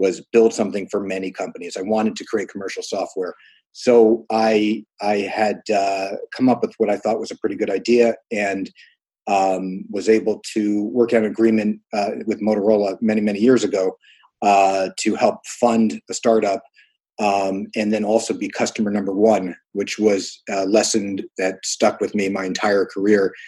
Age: 30-49